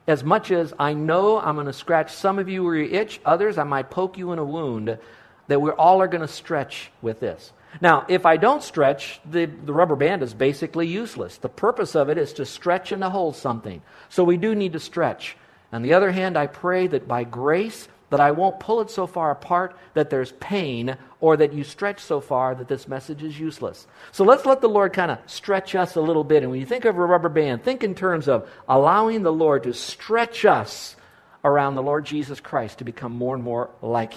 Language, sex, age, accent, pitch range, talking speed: English, male, 50-69, American, 140-190 Hz, 235 wpm